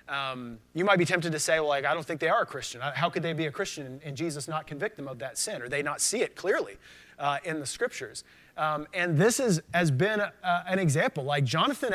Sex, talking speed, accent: male, 265 wpm, American